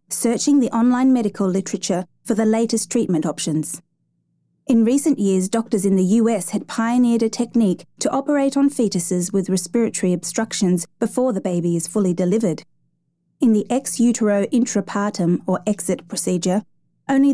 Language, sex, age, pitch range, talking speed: English, female, 30-49, 180-225 Hz, 150 wpm